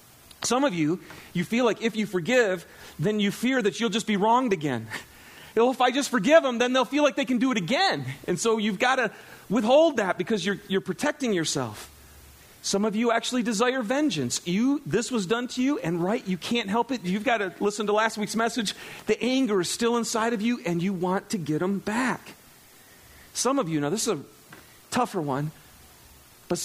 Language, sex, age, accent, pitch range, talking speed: English, male, 40-59, American, 170-230 Hz, 215 wpm